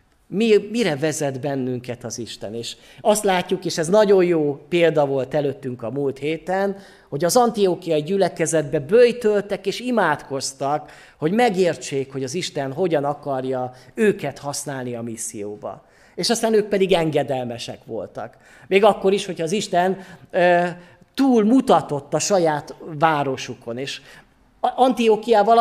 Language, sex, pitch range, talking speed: Hungarian, male, 140-195 Hz, 130 wpm